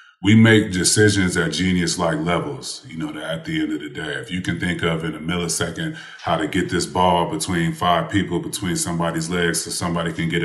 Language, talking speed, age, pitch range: English, 220 wpm, 30-49, 85-95 Hz